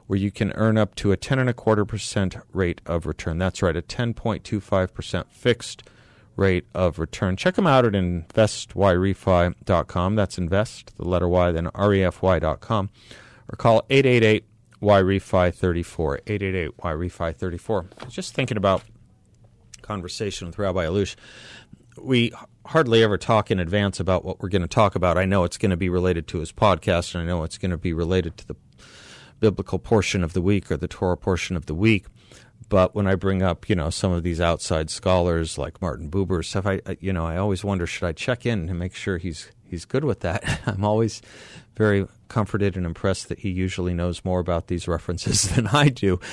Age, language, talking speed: 40-59, English, 200 wpm